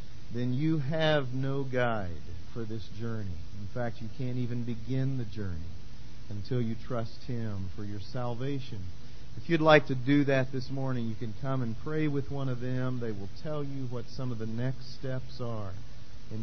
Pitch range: 105-135 Hz